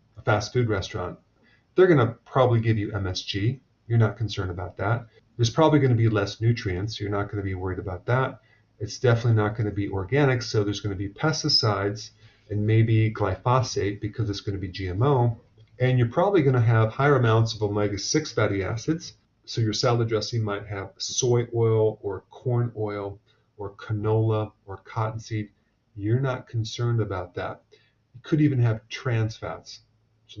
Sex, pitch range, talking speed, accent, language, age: male, 105-120 Hz, 180 wpm, American, English, 40-59